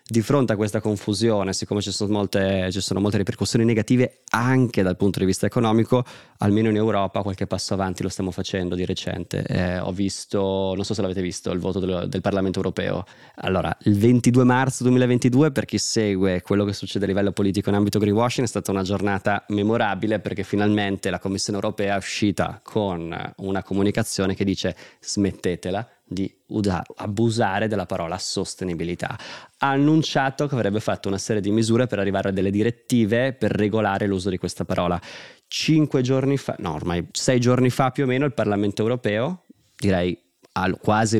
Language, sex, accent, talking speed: Italian, male, native, 175 wpm